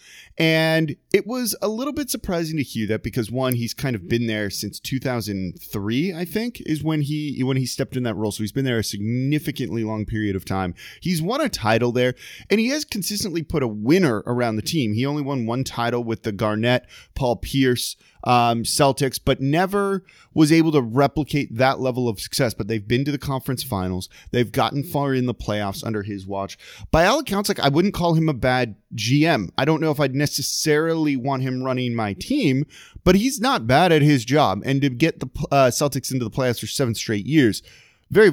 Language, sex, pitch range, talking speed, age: English, male, 115-160 Hz, 215 wpm, 30-49